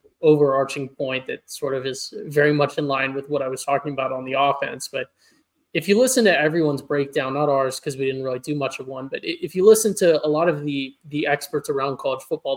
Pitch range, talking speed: 135-155 Hz, 240 wpm